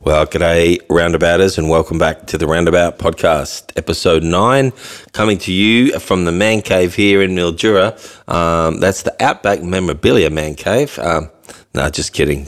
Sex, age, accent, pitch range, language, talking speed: male, 30-49, Australian, 85-110 Hz, English, 160 wpm